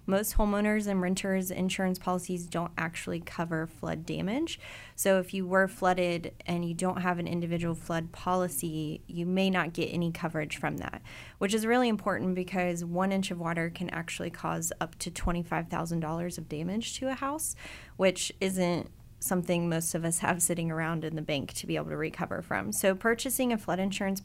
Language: English